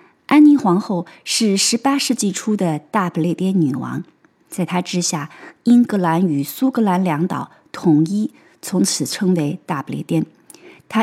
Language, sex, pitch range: Chinese, female, 170-235 Hz